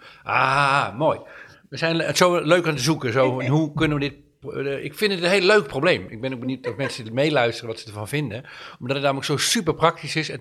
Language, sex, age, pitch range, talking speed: Dutch, male, 50-69, 120-155 Hz, 240 wpm